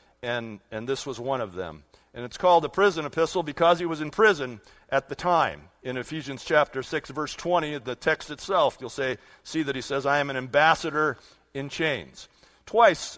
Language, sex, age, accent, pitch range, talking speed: English, male, 50-69, American, 135-190 Hz, 195 wpm